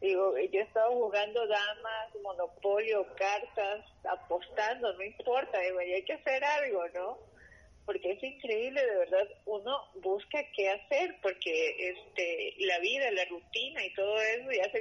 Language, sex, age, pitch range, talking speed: Spanish, female, 30-49, 185-255 Hz, 150 wpm